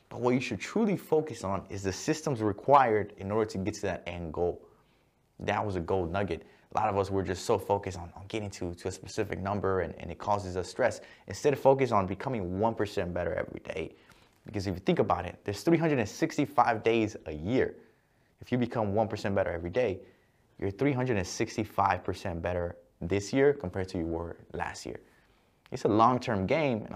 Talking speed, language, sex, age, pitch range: 200 wpm, English, male, 20-39, 95-115 Hz